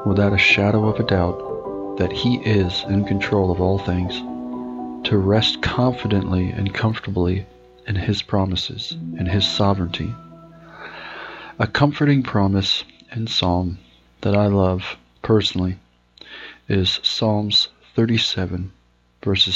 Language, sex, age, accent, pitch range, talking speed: English, male, 40-59, American, 90-105 Hz, 115 wpm